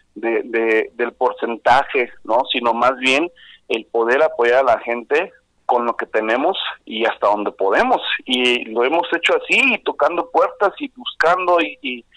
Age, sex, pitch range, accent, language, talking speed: 40-59, male, 120-165 Hz, Mexican, Spanish, 170 wpm